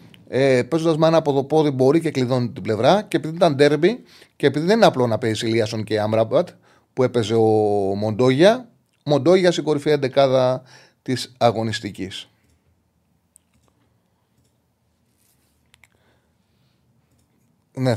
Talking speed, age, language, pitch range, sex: 125 wpm, 30-49, Greek, 115-145 Hz, male